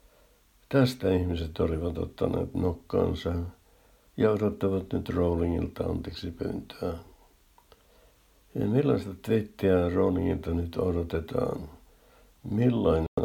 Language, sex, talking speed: Finnish, male, 80 wpm